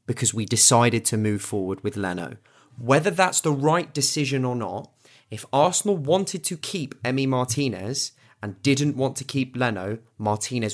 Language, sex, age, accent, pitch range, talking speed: English, male, 30-49, British, 110-145 Hz, 160 wpm